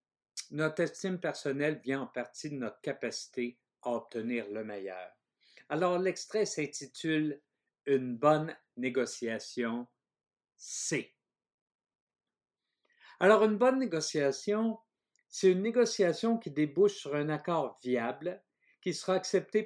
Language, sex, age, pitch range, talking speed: French, male, 50-69, 130-180 Hz, 120 wpm